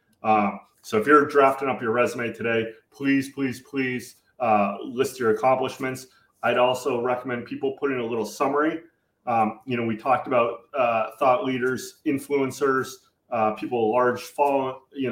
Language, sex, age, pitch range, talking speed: English, male, 30-49, 115-150 Hz, 160 wpm